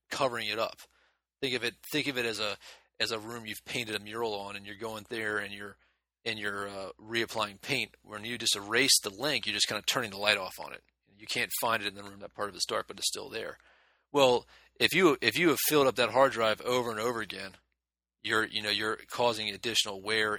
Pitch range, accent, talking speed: 100-110 Hz, American, 245 wpm